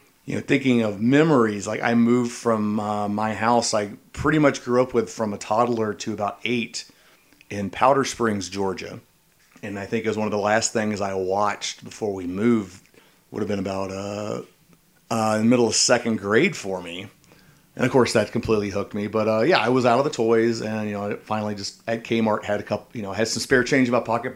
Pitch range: 105-120 Hz